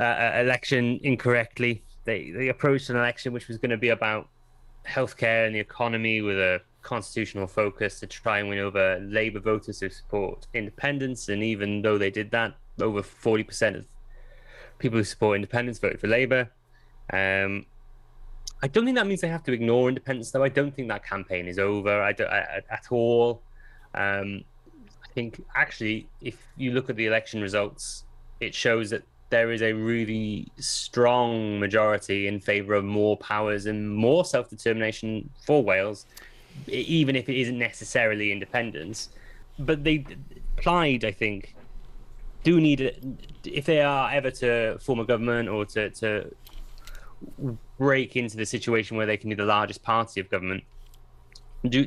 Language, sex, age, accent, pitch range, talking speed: English, male, 20-39, British, 105-125 Hz, 155 wpm